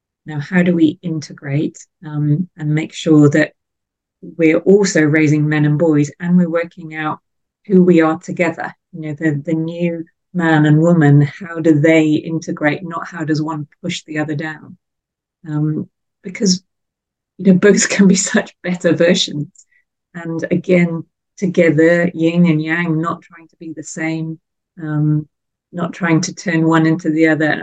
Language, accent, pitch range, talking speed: English, British, 155-175 Hz, 165 wpm